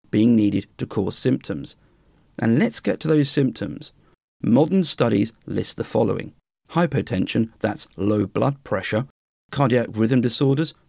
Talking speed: 130 wpm